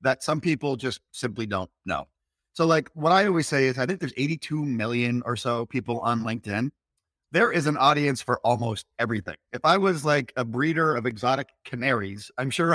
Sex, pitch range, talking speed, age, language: male, 120-160 Hz, 200 wpm, 30-49, English